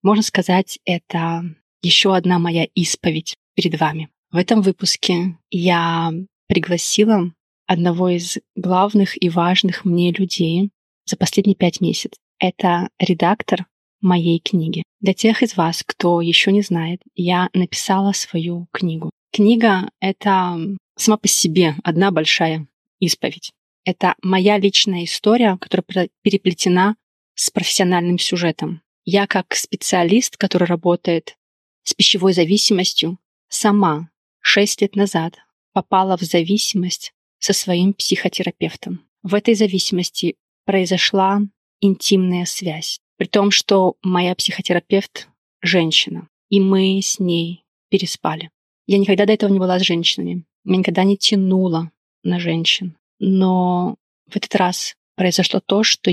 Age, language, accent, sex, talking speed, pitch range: 20-39, Russian, native, female, 120 wpm, 175-200 Hz